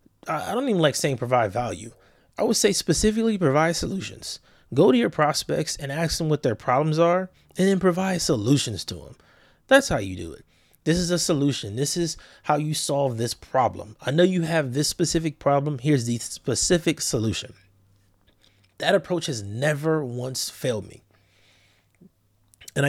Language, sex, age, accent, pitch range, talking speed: English, male, 30-49, American, 120-170 Hz, 170 wpm